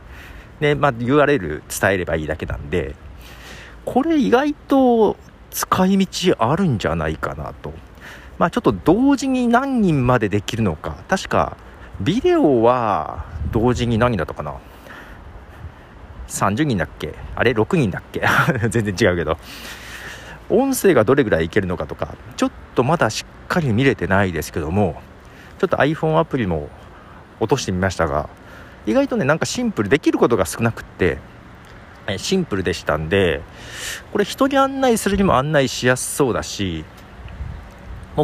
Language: Japanese